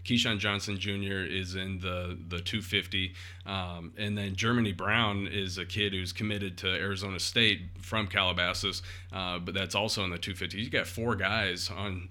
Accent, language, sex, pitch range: American, English, male, 90-105 Hz